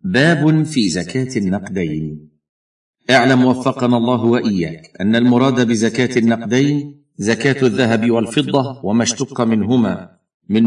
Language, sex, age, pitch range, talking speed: Arabic, male, 50-69, 105-135 Hz, 105 wpm